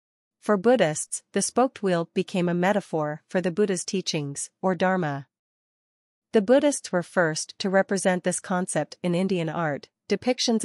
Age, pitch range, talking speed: 40-59, 160-200 Hz, 145 wpm